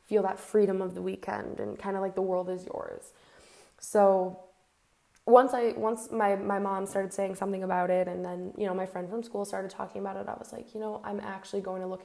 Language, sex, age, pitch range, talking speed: English, female, 10-29, 190-205 Hz, 235 wpm